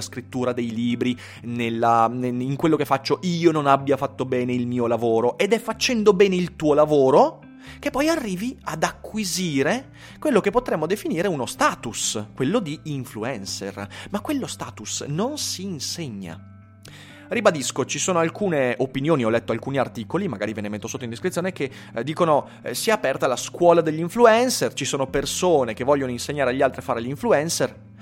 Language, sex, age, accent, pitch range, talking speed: Italian, male, 30-49, native, 115-180 Hz, 175 wpm